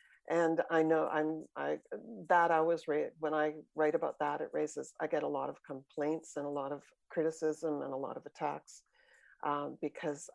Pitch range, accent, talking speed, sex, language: 160-185 Hz, American, 190 wpm, female, English